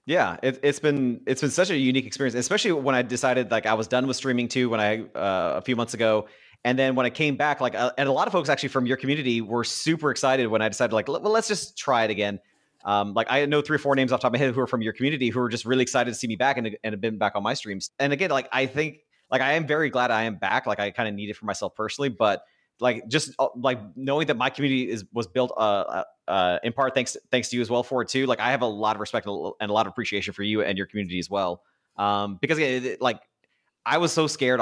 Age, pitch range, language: 30-49, 110-130 Hz, English